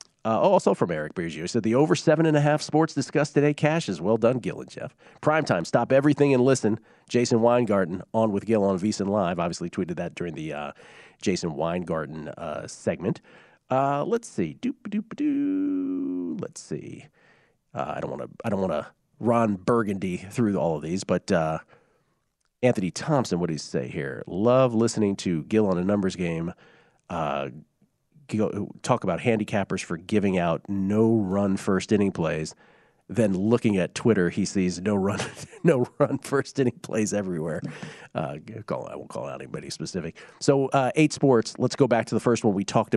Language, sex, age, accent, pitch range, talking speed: English, male, 40-59, American, 100-145 Hz, 180 wpm